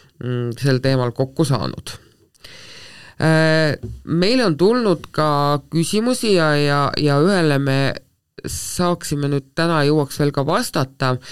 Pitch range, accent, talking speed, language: 125-150 Hz, Finnish, 110 wpm, English